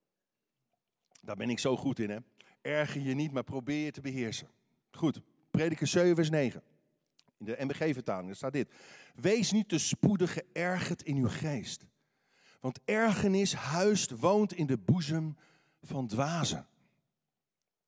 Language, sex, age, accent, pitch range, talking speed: Dutch, male, 50-69, Dutch, 150-205 Hz, 145 wpm